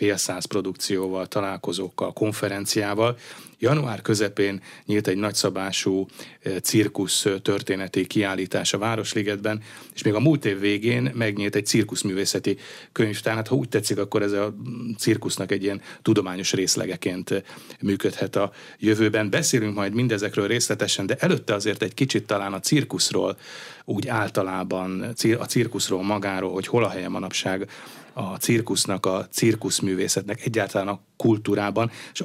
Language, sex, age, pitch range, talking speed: Hungarian, male, 30-49, 100-115 Hz, 130 wpm